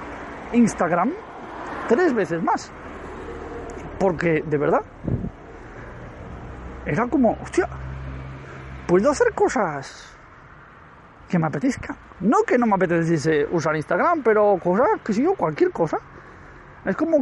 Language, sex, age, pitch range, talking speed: Spanish, male, 40-59, 160-255 Hz, 110 wpm